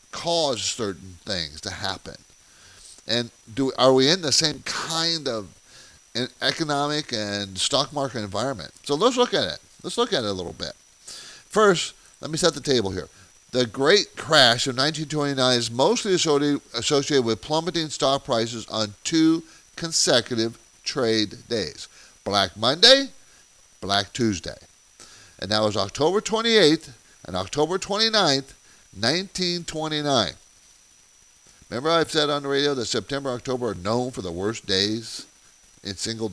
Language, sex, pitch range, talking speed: English, male, 115-165 Hz, 140 wpm